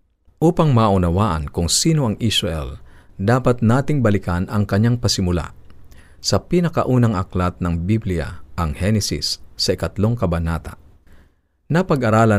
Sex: male